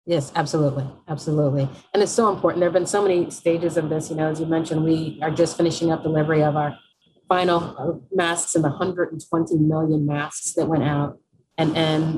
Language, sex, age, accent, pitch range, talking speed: English, female, 30-49, American, 150-165 Hz, 195 wpm